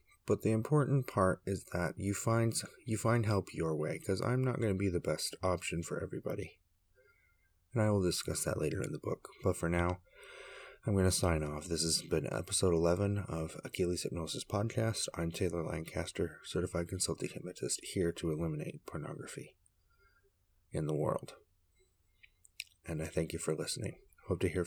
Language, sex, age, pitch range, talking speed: English, male, 30-49, 85-100 Hz, 175 wpm